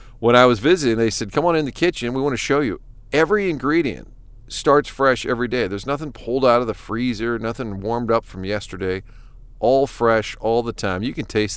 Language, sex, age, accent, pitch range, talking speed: English, male, 40-59, American, 110-135 Hz, 220 wpm